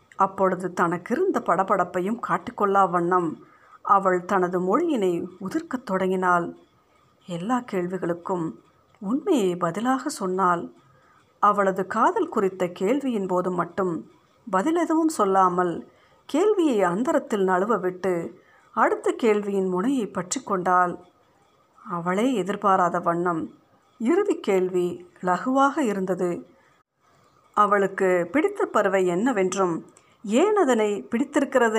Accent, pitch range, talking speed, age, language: native, 180-235 Hz, 85 wpm, 50-69, Tamil